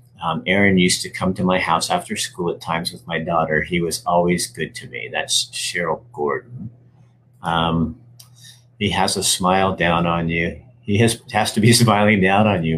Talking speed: 195 wpm